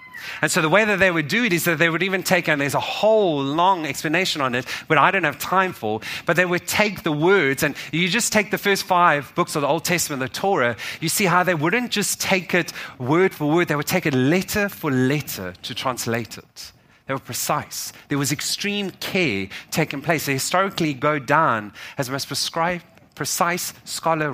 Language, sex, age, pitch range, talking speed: English, male, 30-49, 145-190 Hz, 220 wpm